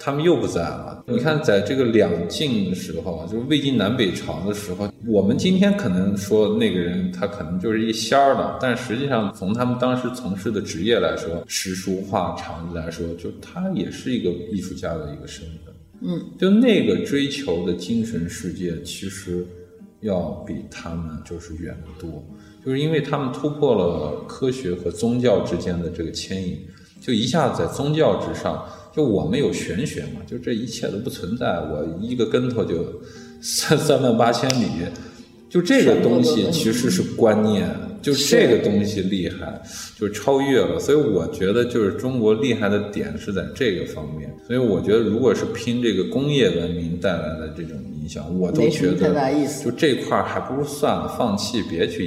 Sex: male